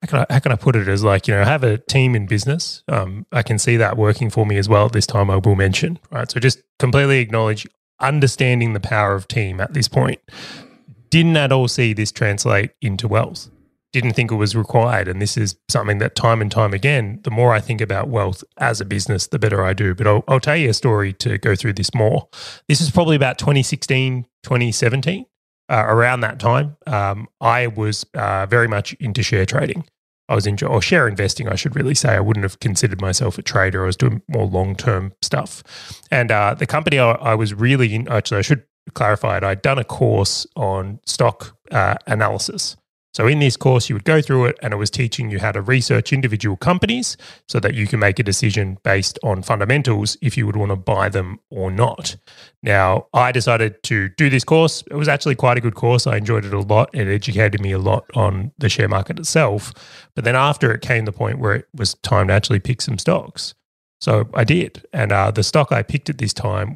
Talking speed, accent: 225 wpm, Australian